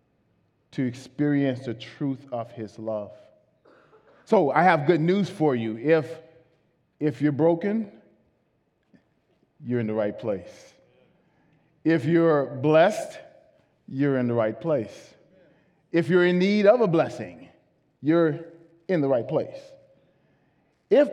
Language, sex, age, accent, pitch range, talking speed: English, male, 40-59, American, 130-165 Hz, 125 wpm